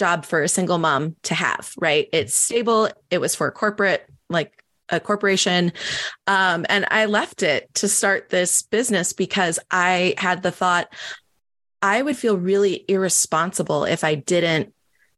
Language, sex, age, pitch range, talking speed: English, female, 20-39, 165-205 Hz, 160 wpm